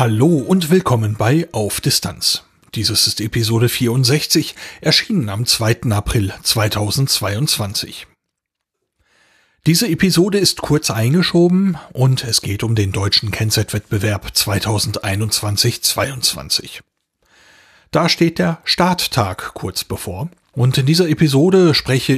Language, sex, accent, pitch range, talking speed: German, male, German, 110-145 Hz, 105 wpm